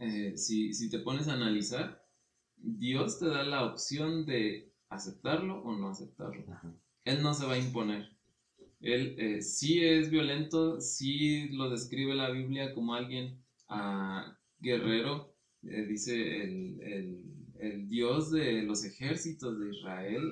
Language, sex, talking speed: Spanish, male, 140 wpm